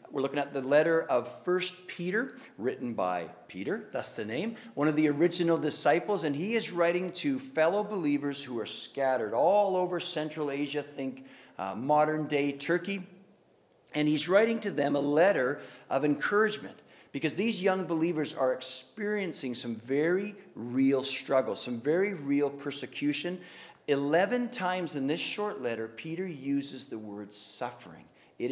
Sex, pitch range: male, 135-200 Hz